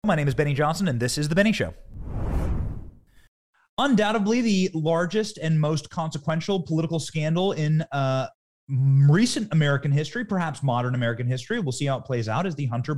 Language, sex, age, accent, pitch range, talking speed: English, male, 30-49, American, 130-190 Hz, 170 wpm